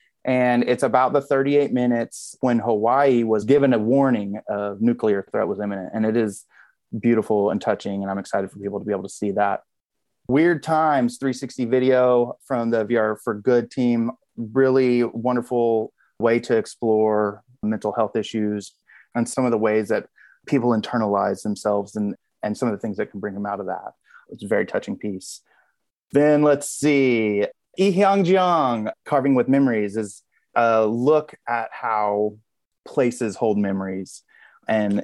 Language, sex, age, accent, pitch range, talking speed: English, male, 20-39, American, 105-130 Hz, 165 wpm